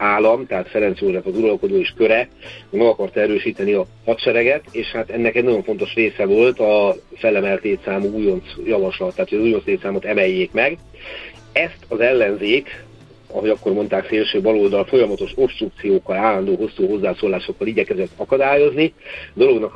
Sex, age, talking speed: male, 50-69, 155 wpm